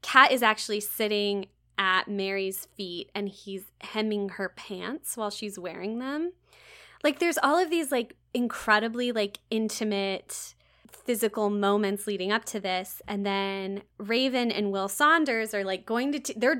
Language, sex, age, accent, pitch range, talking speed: English, female, 20-39, American, 190-220 Hz, 155 wpm